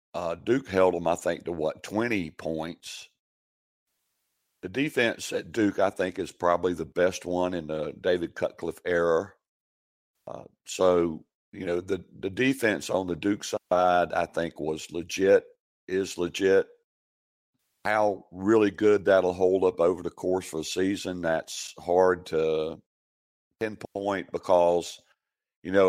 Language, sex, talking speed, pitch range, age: English, male, 145 wpm, 85-100 Hz, 50-69